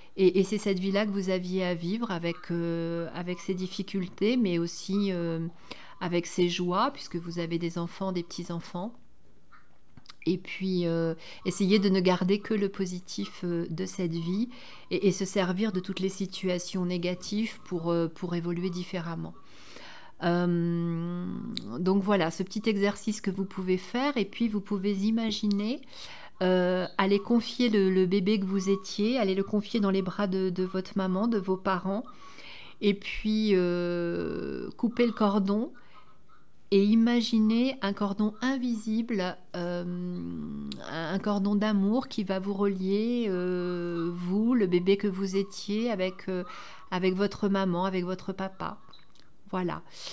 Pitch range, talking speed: 180-210 Hz, 150 wpm